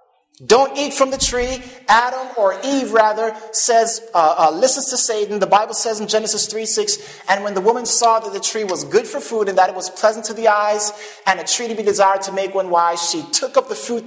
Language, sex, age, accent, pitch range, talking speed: English, male, 30-49, American, 190-245 Hz, 245 wpm